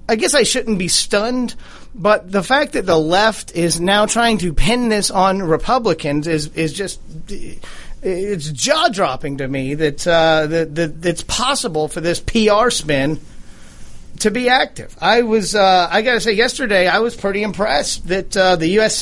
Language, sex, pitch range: English, male, 165-220 Hz